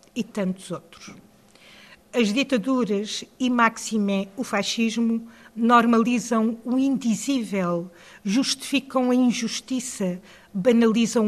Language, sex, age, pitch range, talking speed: Portuguese, female, 50-69, 195-245 Hz, 85 wpm